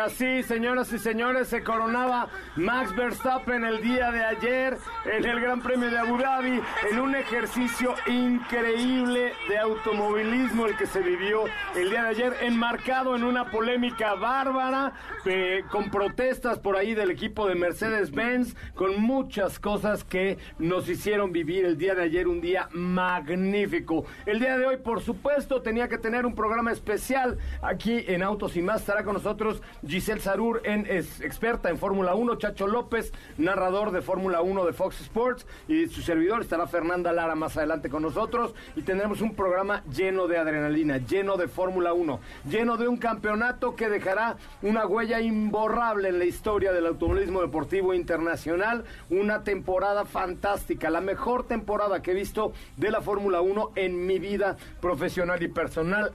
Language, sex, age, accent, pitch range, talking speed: Spanish, male, 50-69, Mexican, 185-240 Hz, 165 wpm